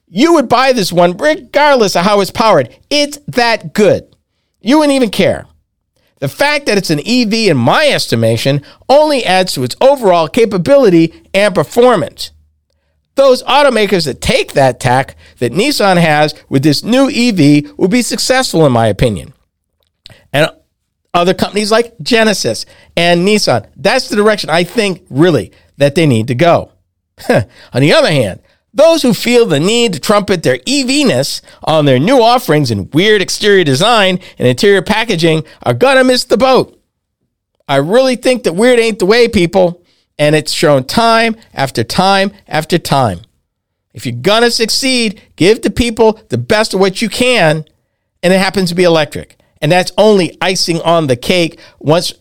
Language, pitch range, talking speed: English, 150-230 Hz, 170 wpm